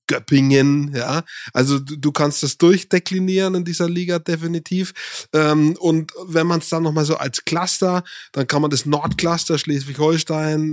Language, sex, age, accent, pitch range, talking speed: German, male, 20-39, German, 150-180 Hz, 150 wpm